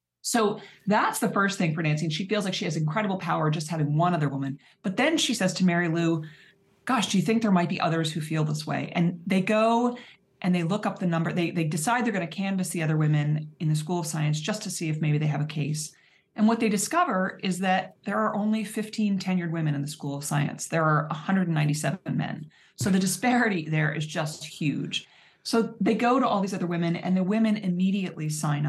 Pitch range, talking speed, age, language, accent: 155-195 Hz, 235 wpm, 30-49, English, American